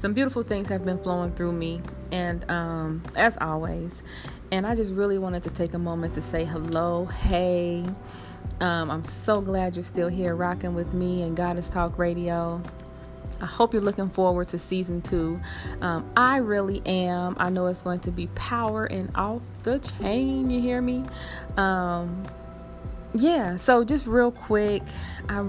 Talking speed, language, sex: 170 wpm, English, female